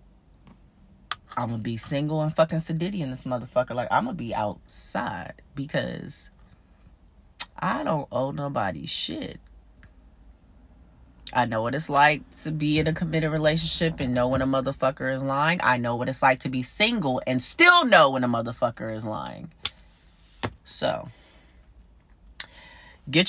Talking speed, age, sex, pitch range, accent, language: 150 wpm, 30-49, female, 125-160 Hz, American, English